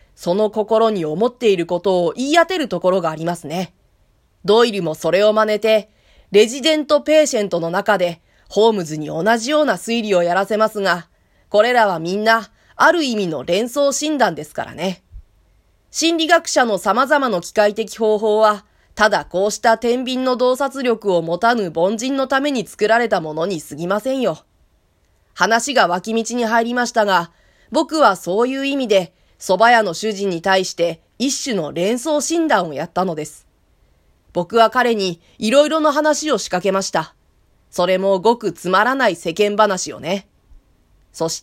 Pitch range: 180-255 Hz